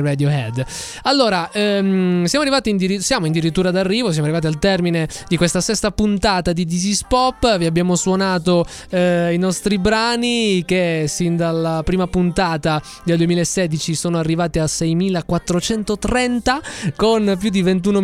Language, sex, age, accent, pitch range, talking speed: Italian, male, 20-39, native, 155-190 Hz, 150 wpm